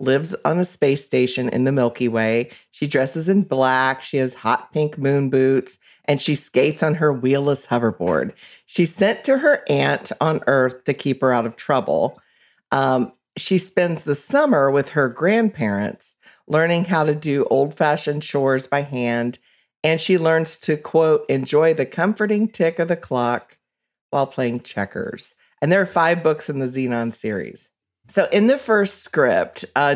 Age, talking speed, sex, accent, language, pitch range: 40-59, 170 wpm, female, American, English, 125-155 Hz